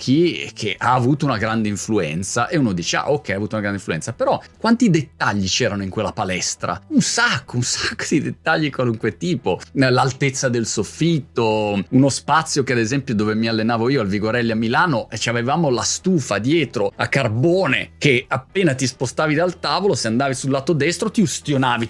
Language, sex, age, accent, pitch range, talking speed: Italian, male, 30-49, native, 105-155 Hz, 185 wpm